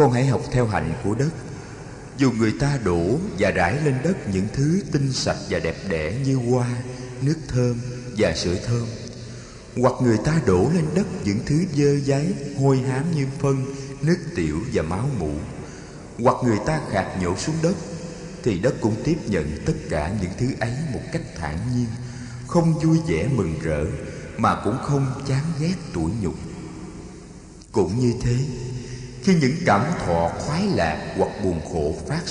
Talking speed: 175 wpm